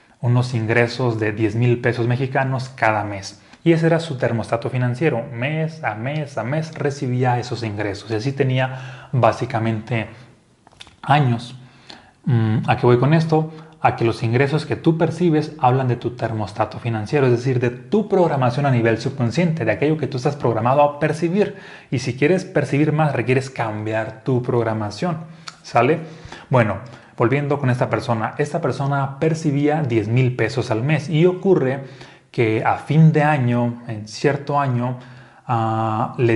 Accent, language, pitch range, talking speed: Mexican, Spanish, 115-145 Hz, 160 wpm